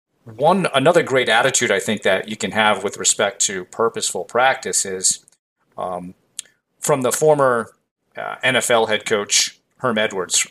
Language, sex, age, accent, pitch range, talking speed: English, male, 40-59, American, 100-135 Hz, 150 wpm